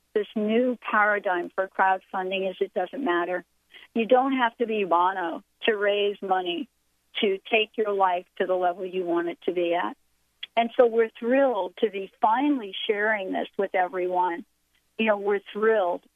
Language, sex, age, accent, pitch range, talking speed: English, female, 50-69, American, 185-220 Hz, 170 wpm